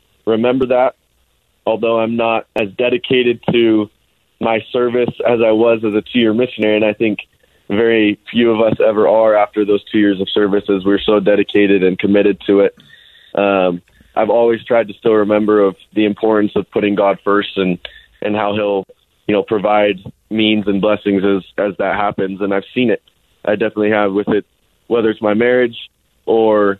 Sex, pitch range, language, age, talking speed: male, 100-115 Hz, English, 20-39, 185 wpm